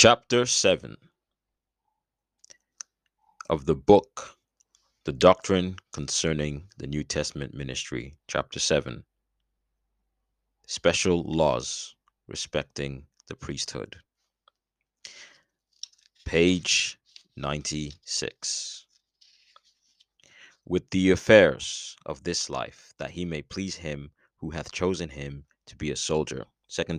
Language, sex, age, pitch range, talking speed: English, male, 30-49, 70-85 Hz, 90 wpm